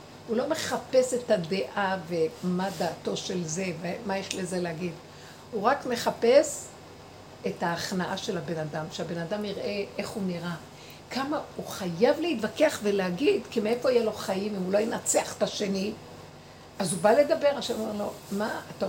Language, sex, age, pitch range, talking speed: Hebrew, female, 60-79, 195-250 Hz, 165 wpm